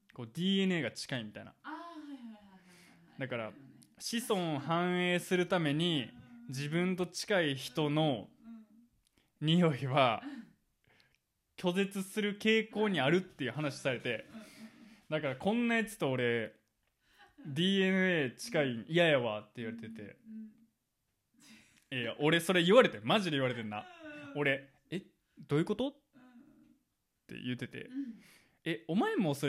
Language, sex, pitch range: Japanese, male, 140-235 Hz